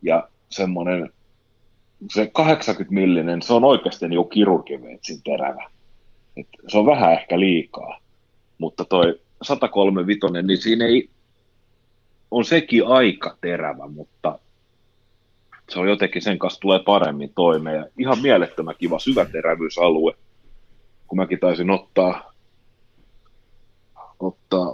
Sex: male